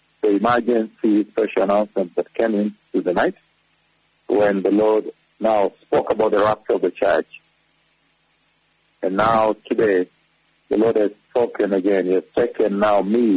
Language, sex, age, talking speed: English, male, 50-69, 155 wpm